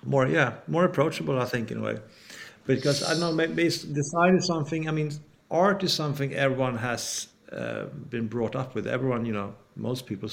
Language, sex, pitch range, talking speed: English, male, 120-155 Hz, 200 wpm